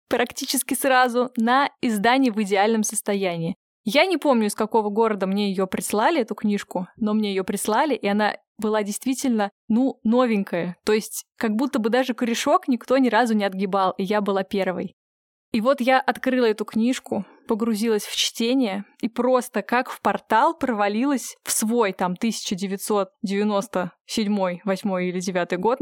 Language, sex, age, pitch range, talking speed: Russian, female, 20-39, 200-240 Hz, 155 wpm